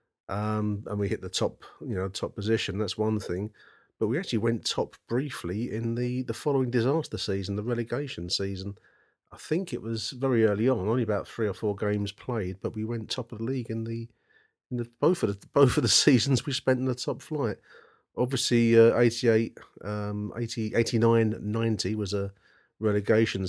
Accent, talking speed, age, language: British, 195 wpm, 40-59, English